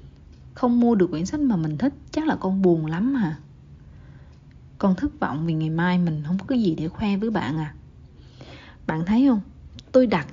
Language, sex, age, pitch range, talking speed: Vietnamese, female, 20-39, 165-255 Hz, 205 wpm